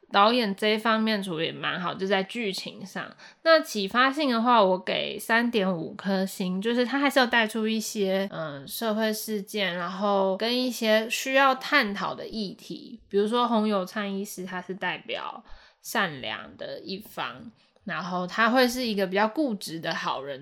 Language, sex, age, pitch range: Chinese, female, 20-39, 195-240 Hz